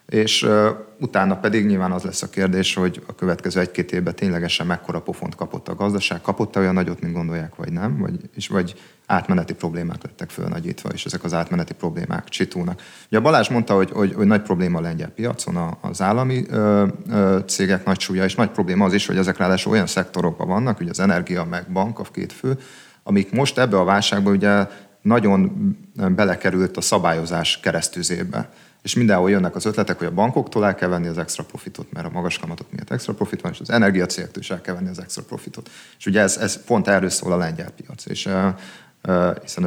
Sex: male